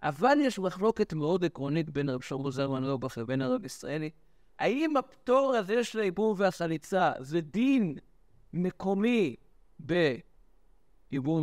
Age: 60-79